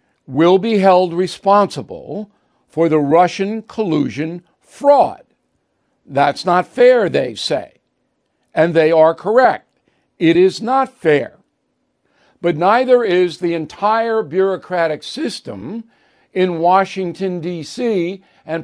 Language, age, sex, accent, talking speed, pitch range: English, 60-79, male, American, 105 wpm, 160-205 Hz